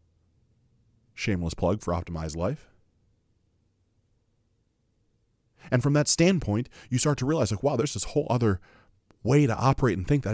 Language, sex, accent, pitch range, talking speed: English, male, American, 105-135 Hz, 145 wpm